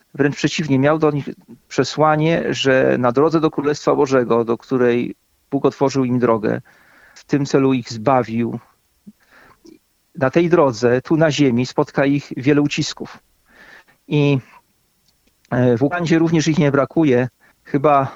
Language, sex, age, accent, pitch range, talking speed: Polish, male, 40-59, native, 135-155 Hz, 135 wpm